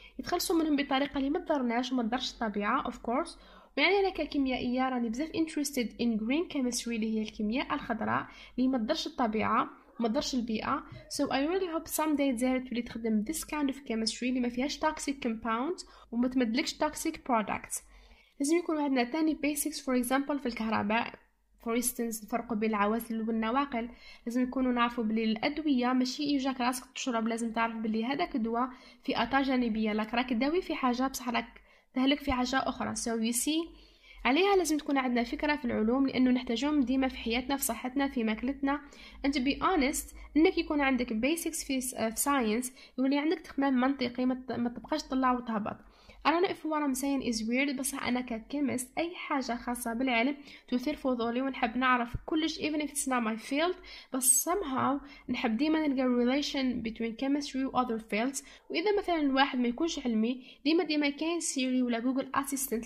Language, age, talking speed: Arabic, 10-29, 160 wpm